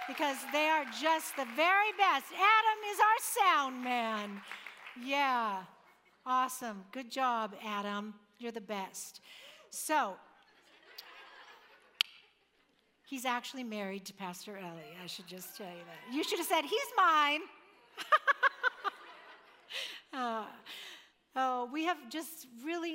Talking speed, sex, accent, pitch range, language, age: 120 wpm, female, American, 205-275 Hz, English, 60-79